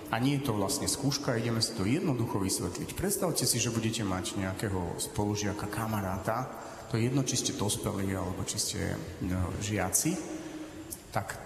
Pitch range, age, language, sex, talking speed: 105-130 Hz, 40-59, Slovak, male, 155 wpm